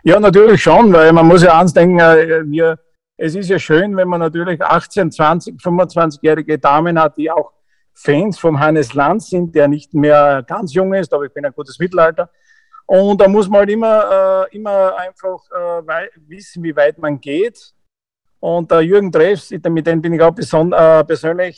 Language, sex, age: German, male, 50-69